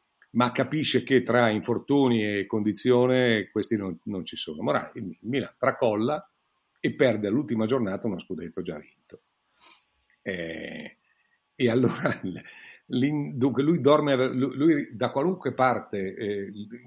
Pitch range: 110-130 Hz